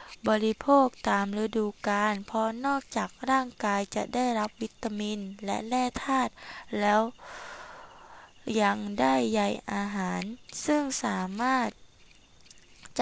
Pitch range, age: 200-245 Hz, 10-29